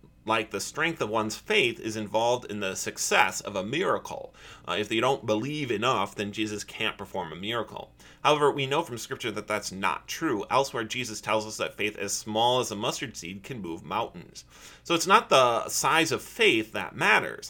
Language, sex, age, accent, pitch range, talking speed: English, male, 30-49, American, 110-180 Hz, 200 wpm